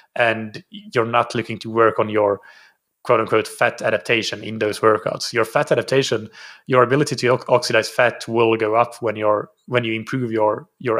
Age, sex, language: 30-49, male, English